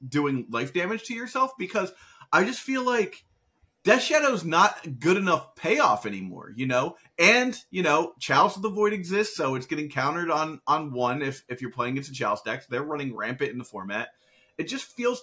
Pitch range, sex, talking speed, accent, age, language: 125-185 Hz, male, 210 wpm, American, 30-49, English